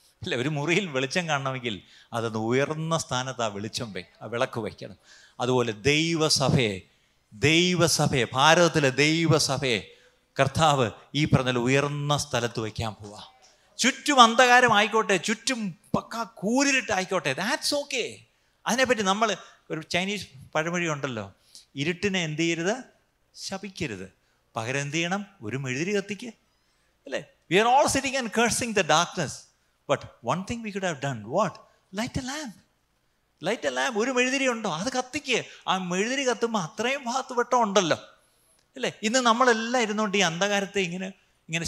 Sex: male